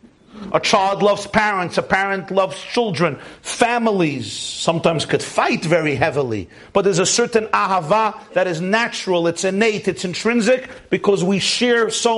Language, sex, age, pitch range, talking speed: English, male, 50-69, 140-200 Hz, 150 wpm